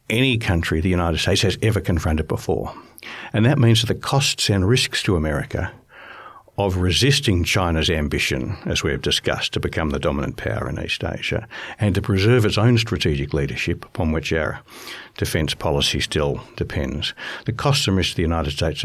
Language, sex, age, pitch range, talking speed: English, male, 60-79, 85-110 Hz, 180 wpm